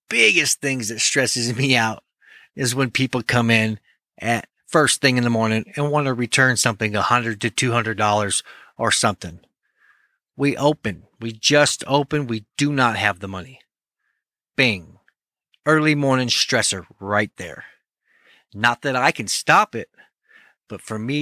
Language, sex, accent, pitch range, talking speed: English, male, American, 110-145 Hz, 160 wpm